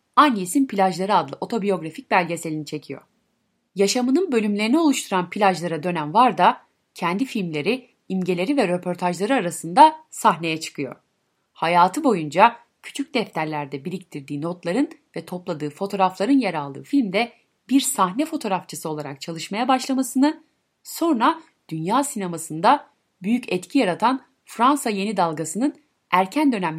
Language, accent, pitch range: Turkish, native, 175-260 Hz